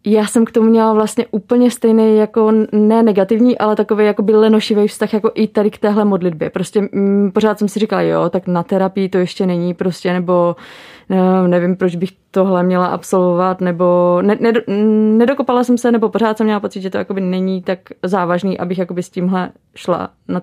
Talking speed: 195 wpm